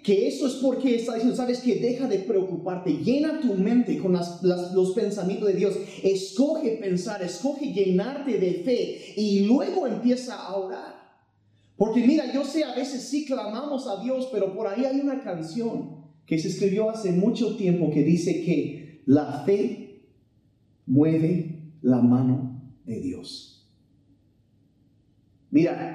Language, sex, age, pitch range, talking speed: Spanish, male, 40-59, 155-230 Hz, 150 wpm